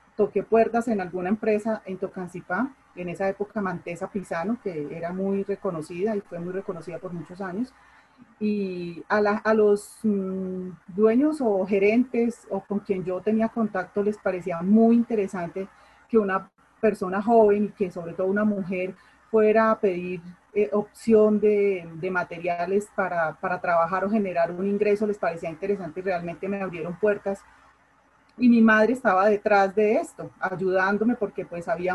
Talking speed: 160 wpm